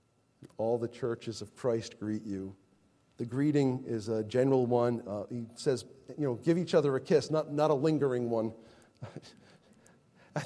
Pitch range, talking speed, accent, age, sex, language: 130-175 Hz, 165 wpm, American, 40-59, male, English